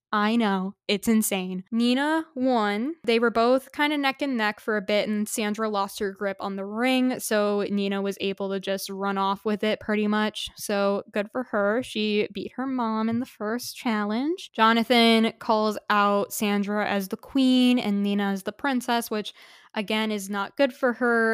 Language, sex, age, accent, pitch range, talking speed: English, female, 10-29, American, 205-235 Hz, 190 wpm